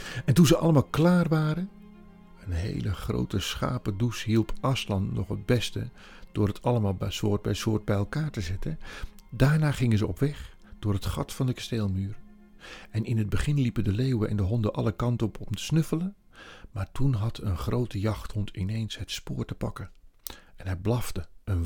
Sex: male